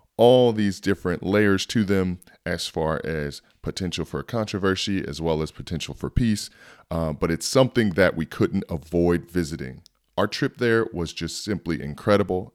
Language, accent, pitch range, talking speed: English, American, 80-95 Hz, 165 wpm